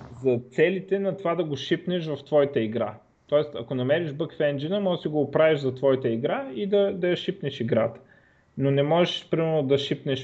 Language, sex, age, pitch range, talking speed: Bulgarian, male, 20-39, 125-160 Hz, 205 wpm